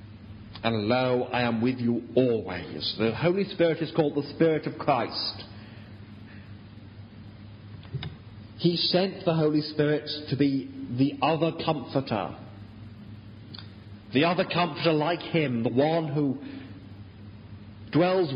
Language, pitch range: English, 105-150 Hz